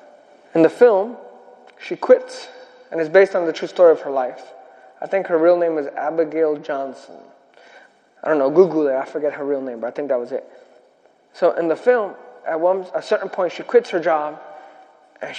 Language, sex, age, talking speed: English, male, 20-39, 205 wpm